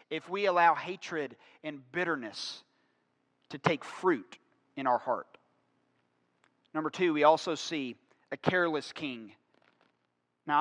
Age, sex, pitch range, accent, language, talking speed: 40-59, male, 150-225 Hz, American, English, 120 wpm